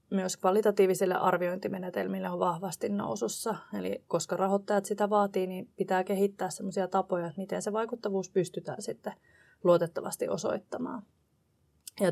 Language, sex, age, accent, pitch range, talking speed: Finnish, female, 20-39, native, 175-200 Hz, 115 wpm